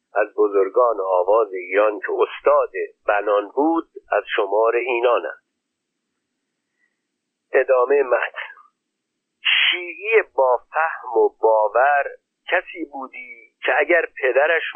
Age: 50-69